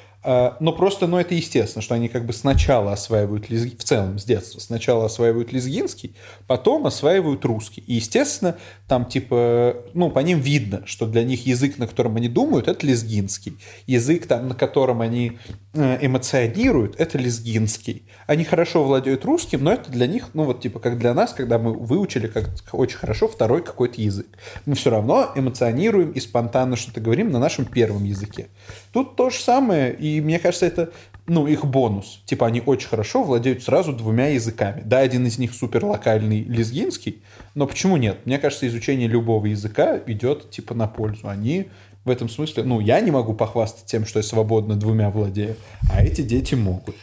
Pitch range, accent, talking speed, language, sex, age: 110-135 Hz, native, 185 wpm, Russian, male, 30-49